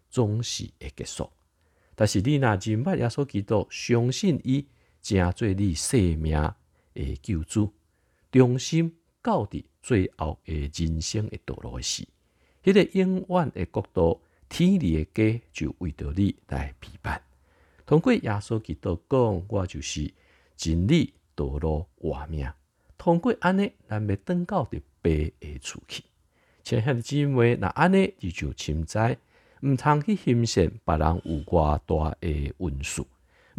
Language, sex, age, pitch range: Chinese, male, 50-69, 80-125 Hz